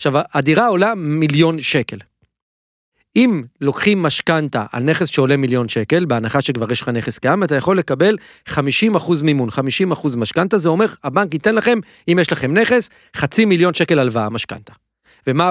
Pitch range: 130-185 Hz